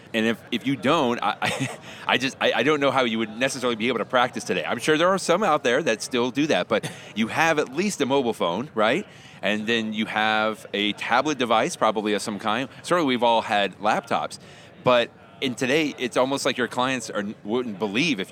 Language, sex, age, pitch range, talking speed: English, male, 30-49, 105-135 Hz, 215 wpm